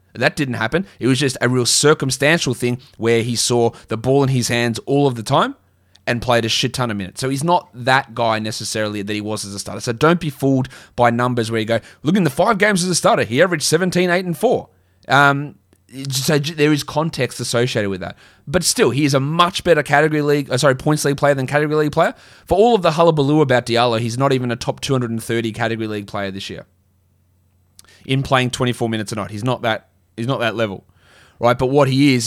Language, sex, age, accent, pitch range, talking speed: English, male, 20-39, Australian, 120-155 Hz, 235 wpm